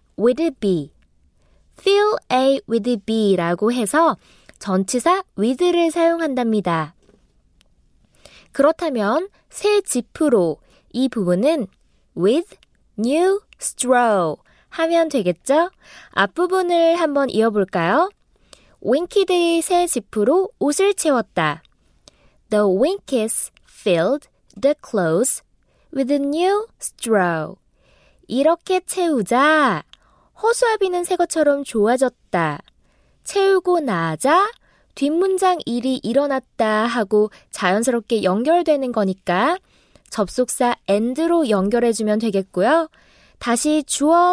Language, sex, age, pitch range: Korean, female, 20-39, 220-340 Hz